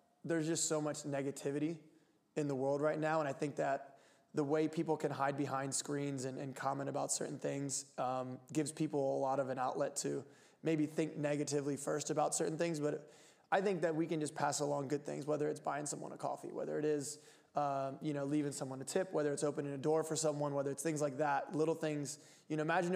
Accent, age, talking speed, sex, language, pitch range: American, 20-39, 225 wpm, male, English, 145-160 Hz